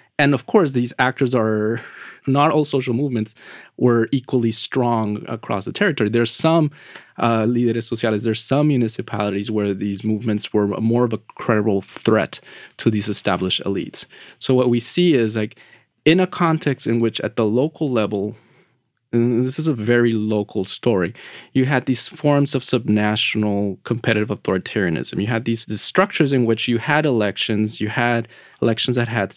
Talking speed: 170 wpm